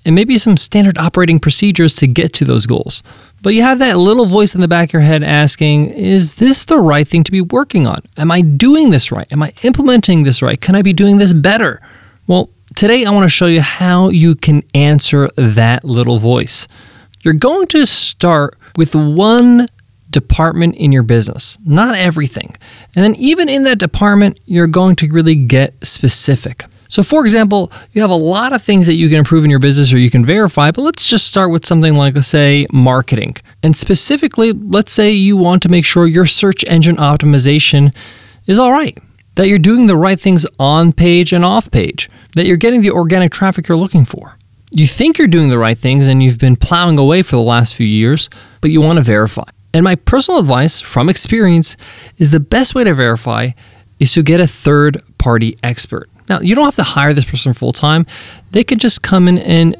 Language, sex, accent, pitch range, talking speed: English, male, American, 135-195 Hz, 210 wpm